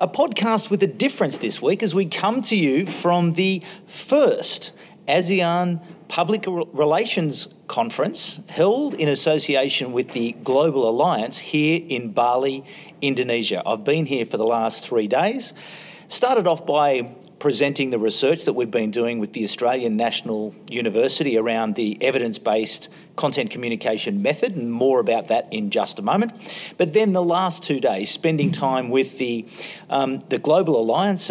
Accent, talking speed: Australian, 155 wpm